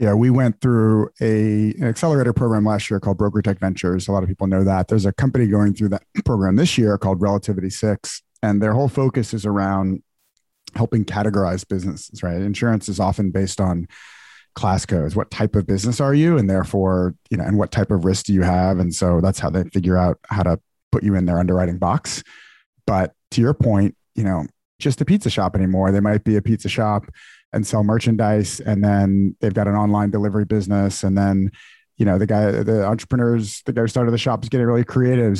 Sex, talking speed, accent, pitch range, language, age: male, 215 wpm, American, 100-115 Hz, English, 30-49